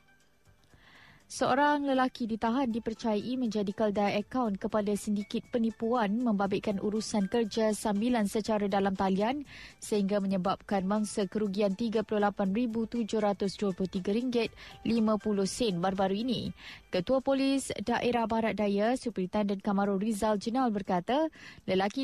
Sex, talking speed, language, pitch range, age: female, 95 wpm, Malay, 205-240 Hz, 20-39